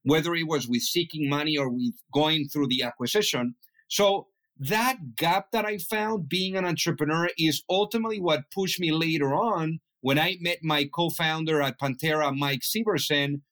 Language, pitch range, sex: English, 145-185 Hz, male